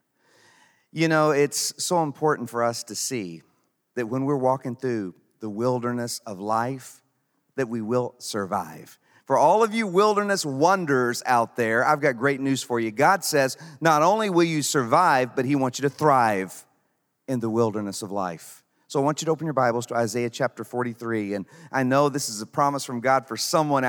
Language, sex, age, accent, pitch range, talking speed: English, male, 40-59, American, 120-155 Hz, 195 wpm